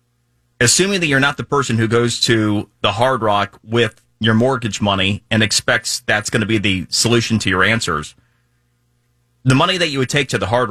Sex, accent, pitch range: male, American, 95-120 Hz